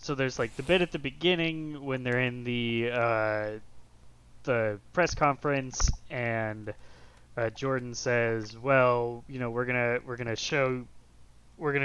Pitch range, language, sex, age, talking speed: 120-160 Hz, English, male, 20-39, 160 wpm